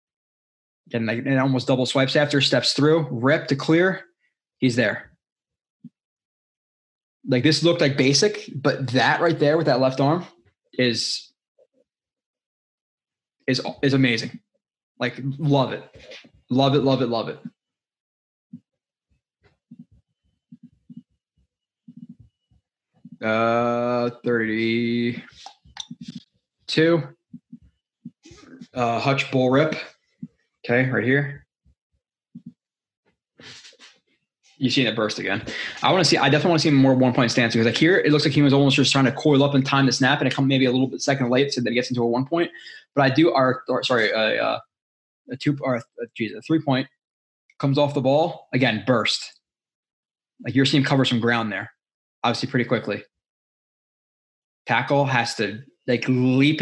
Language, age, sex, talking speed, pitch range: English, 20-39, male, 145 wpm, 125-145 Hz